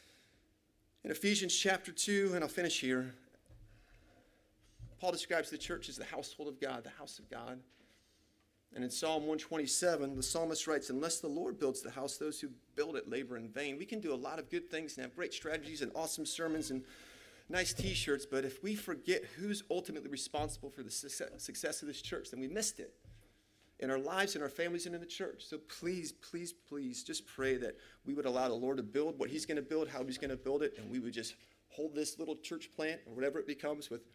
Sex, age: male, 30-49